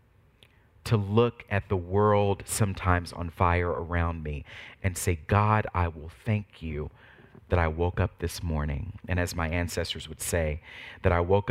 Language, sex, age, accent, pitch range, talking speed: English, male, 40-59, American, 85-105 Hz, 165 wpm